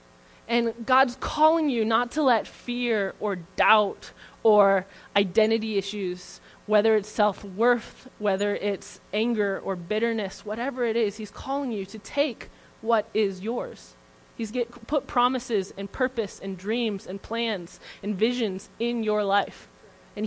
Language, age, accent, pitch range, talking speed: English, 20-39, American, 195-235 Hz, 140 wpm